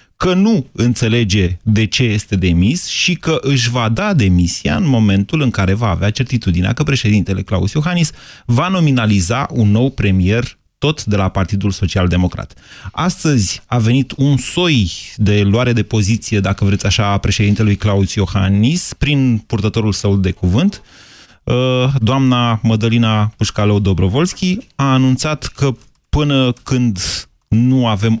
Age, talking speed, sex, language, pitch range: 30-49, 140 wpm, male, Romanian, 100-130 Hz